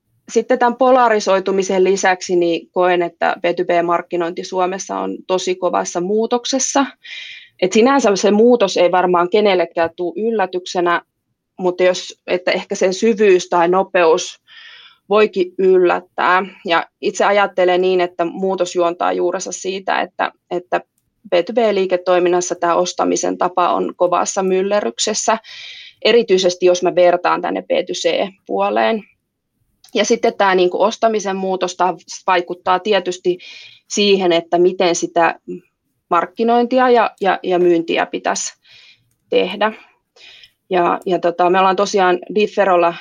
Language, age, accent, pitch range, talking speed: Finnish, 20-39, native, 175-215 Hz, 105 wpm